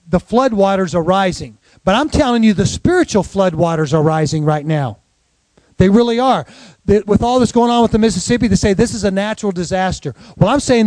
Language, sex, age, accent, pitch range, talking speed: English, male, 40-59, American, 185-230 Hz, 200 wpm